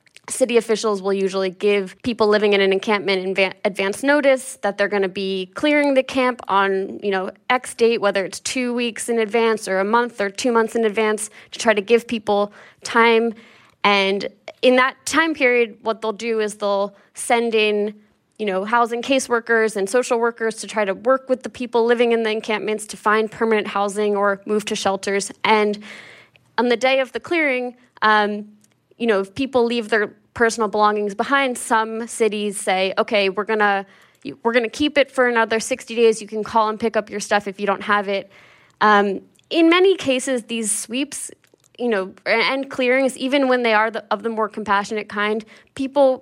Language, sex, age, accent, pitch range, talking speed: English, female, 20-39, American, 205-240 Hz, 195 wpm